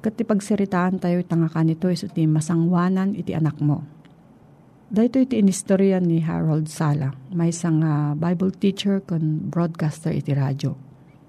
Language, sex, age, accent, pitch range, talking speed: Filipino, female, 40-59, native, 155-195 Hz, 135 wpm